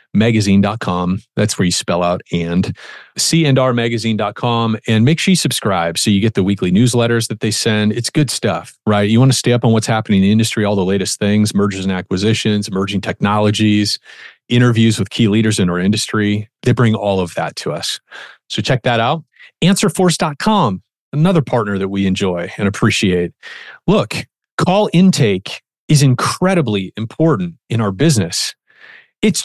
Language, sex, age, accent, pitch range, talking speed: English, male, 30-49, American, 105-160 Hz, 165 wpm